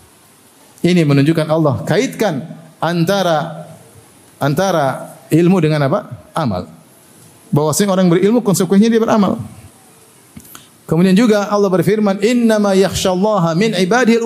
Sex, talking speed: male, 115 wpm